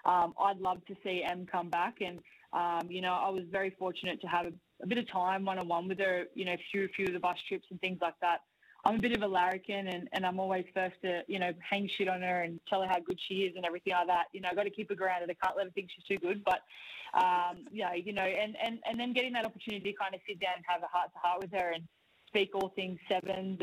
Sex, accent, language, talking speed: female, Australian, English, 285 wpm